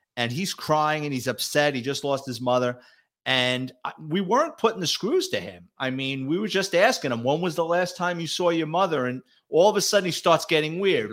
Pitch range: 140-185 Hz